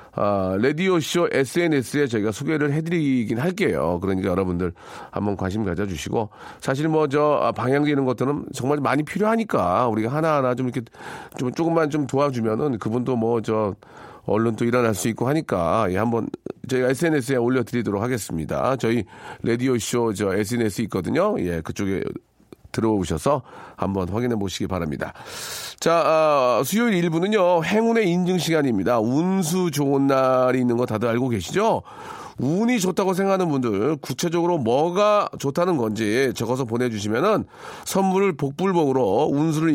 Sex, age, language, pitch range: male, 40-59, Korean, 115-160 Hz